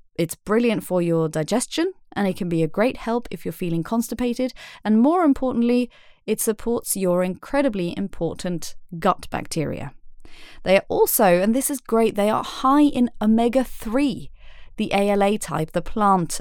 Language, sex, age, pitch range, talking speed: English, female, 30-49, 175-240 Hz, 155 wpm